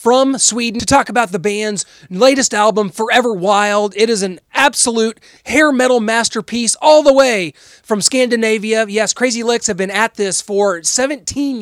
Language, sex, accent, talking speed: English, male, American, 165 wpm